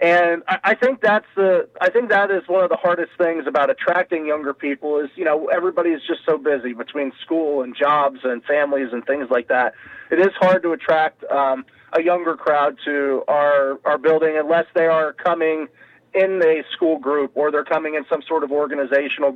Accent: American